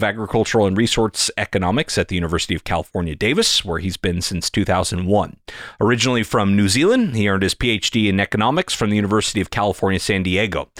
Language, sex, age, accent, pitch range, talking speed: English, male, 30-49, American, 95-125 Hz, 180 wpm